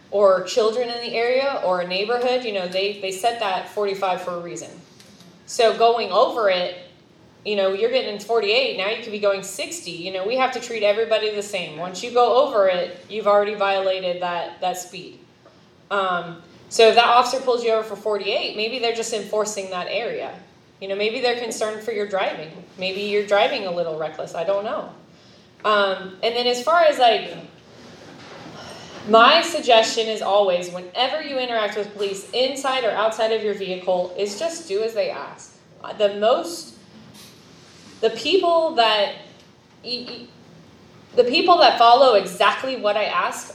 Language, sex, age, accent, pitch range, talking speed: English, female, 20-39, American, 190-235 Hz, 175 wpm